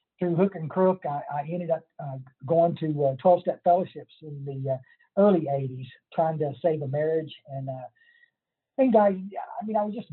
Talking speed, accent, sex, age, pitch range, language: 205 wpm, American, male, 50-69, 145-180 Hz, English